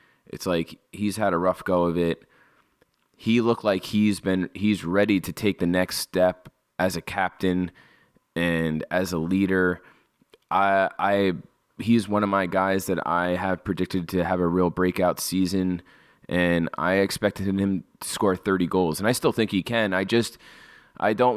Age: 20-39